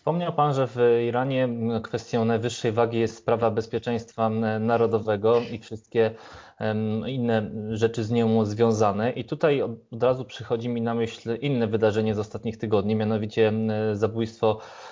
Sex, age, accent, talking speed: male, 20-39, native, 135 wpm